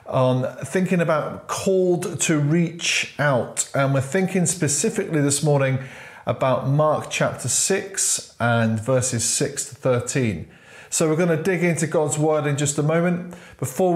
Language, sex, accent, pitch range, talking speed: English, male, British, 130-155 Hz, 145 wpm